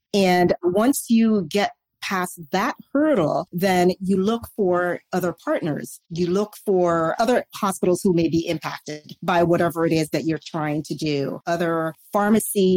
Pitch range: 170-210 Hz